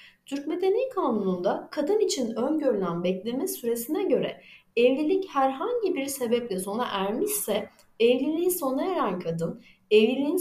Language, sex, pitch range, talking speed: Turkish, female, 215-320 Hz, 115 wpm